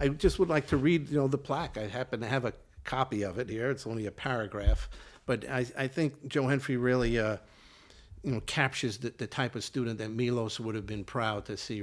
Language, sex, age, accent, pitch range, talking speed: English, male, 50-69, American, 115-135 Hz, 240 wpm